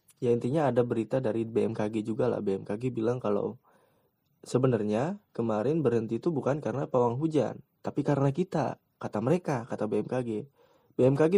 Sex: male